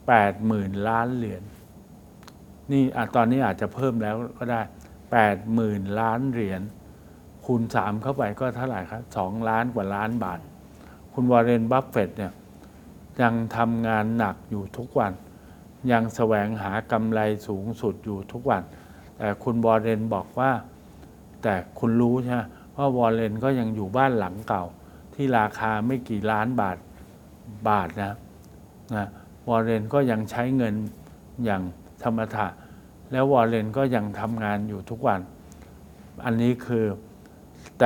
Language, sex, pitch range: Thai, male, 100-120 Hz